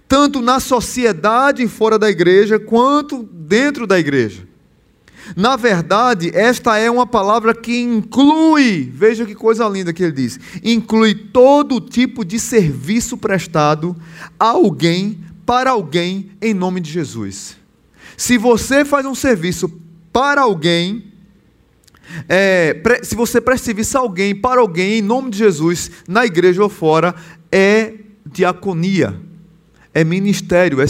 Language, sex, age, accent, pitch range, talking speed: Portuguese, male, 20-39, Brazilian, 165-225 Hz, 130 wpm